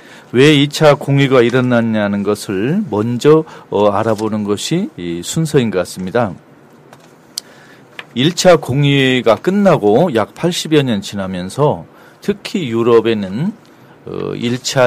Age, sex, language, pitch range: 40-59, male, Korean, 105-150 Hz